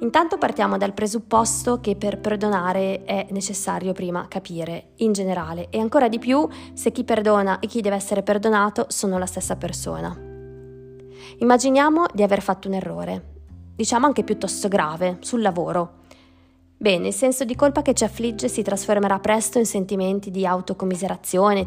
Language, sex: Italian, female